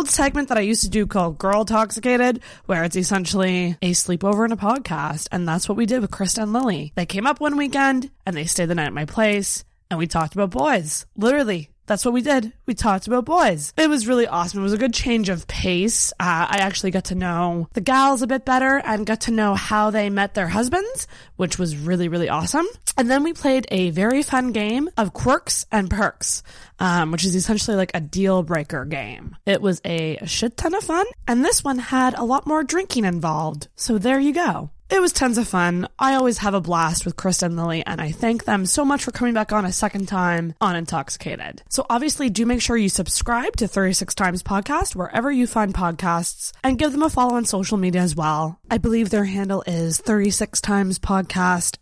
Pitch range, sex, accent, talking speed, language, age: 180-255 Hz, female, American, 220 wpm, English, 20-39